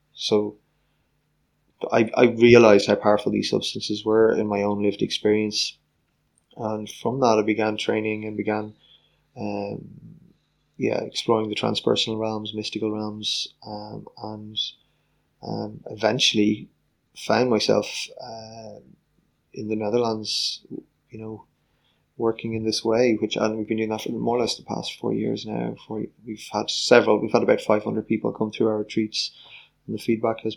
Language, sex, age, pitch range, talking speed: English, male, 20-39, 105-115 Hz, 155 wpm